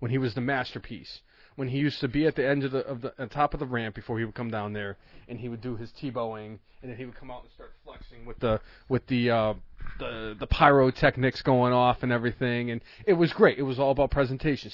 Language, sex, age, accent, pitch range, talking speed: English, male, 30-49, American, 125-160 Hz, 265 wpm